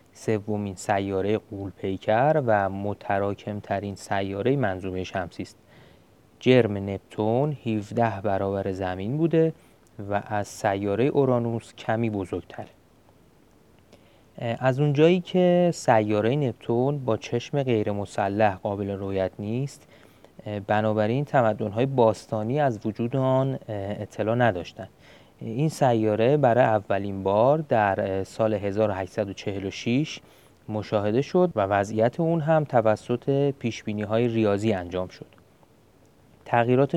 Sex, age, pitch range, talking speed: male, 30-49, 100-130 Hz, 105 wpm